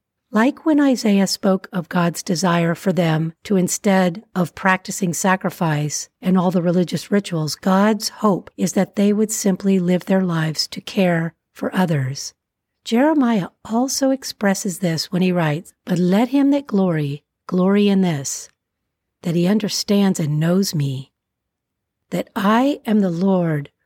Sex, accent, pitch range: female, American, 170-215 Hz